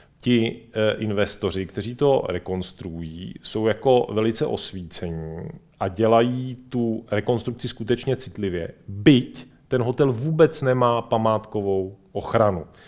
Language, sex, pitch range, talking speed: Czech, male, 105-130 Hz, 105 wpm